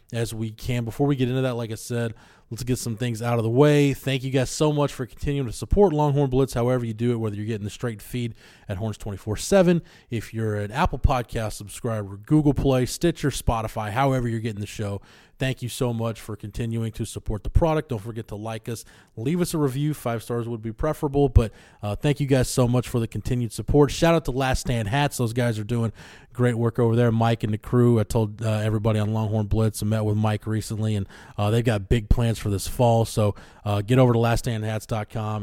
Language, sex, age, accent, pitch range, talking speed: English, male, 20-39, American, 110-130 Hz, 230 wpm